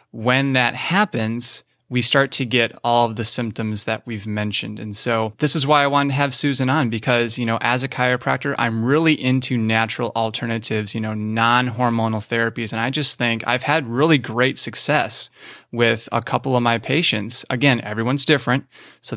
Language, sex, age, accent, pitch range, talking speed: English, male, 20-39, American, 115-135 Hz, 185 wpm